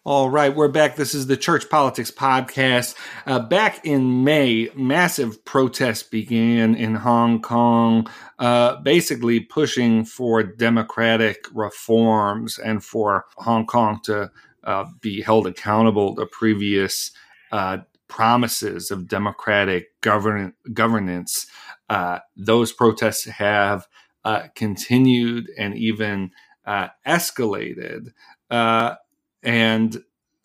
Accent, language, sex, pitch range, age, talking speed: American, English, male, 110-125 Hz, 40-59, 110 wpm